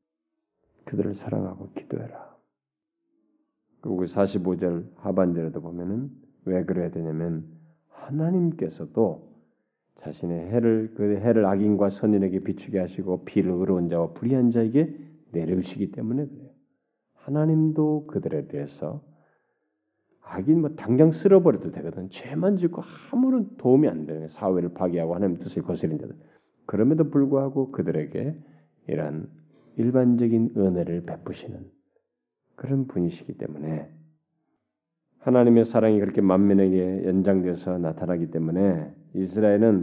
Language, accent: Korean, native